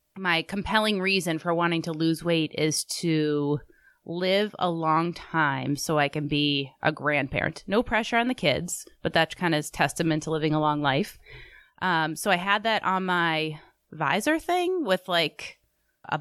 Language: English